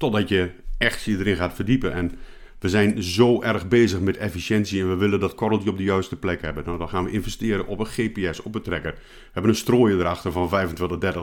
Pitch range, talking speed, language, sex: 95-120 Hz, 230 wpm, Dutch, male